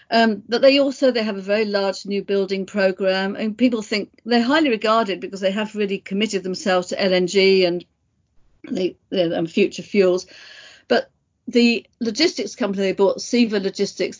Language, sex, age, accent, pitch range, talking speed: English, female, 50-69, British, 185-230 Hz, 165 wpm